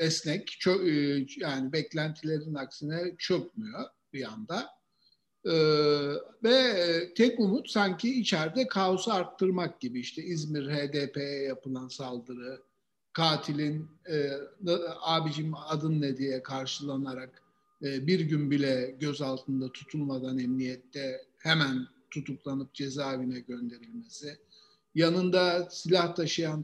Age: 50-69